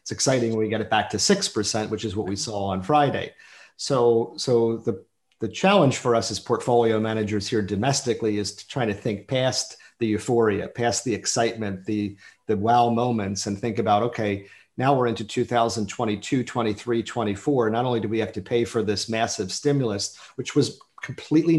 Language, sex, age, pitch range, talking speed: English, male, 40-59, 105-120 Hz, 185 wpm